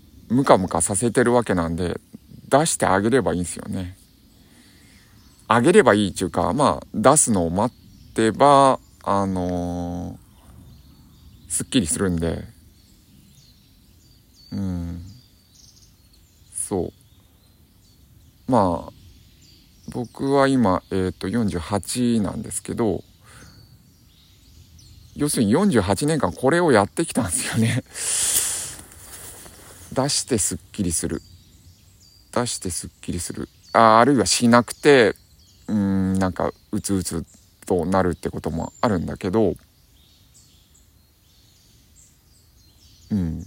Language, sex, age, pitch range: Japanese, male, 50-69, 90-110 Hz